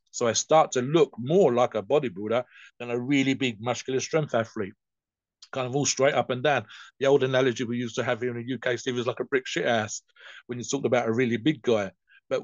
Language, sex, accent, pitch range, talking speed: English, male, British, 115-140 Hz, 235 wpm